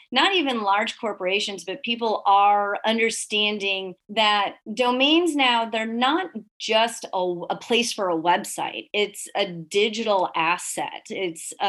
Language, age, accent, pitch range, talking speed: English, 30-49, American, 185-220 Hz, 130 wpm